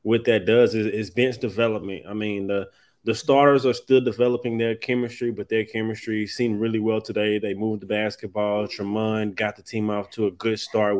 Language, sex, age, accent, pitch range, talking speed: English, male, 20-39, American, 110-120 Hz, 200 wpm